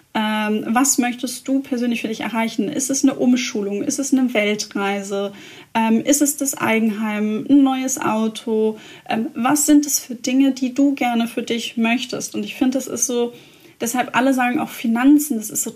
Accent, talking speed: German, 190 wpm